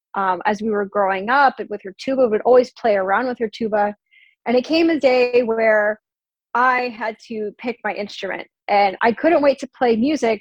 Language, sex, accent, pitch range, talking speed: English, female, American, 210-270 Hz, 210 wpm